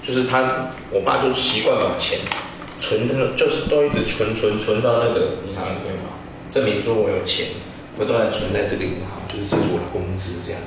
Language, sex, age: Chinese, male, 20-39